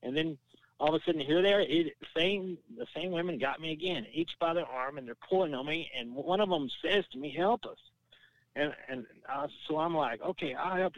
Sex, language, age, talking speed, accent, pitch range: male, English, 60-79, 235 wpm, American, 130-175 Hz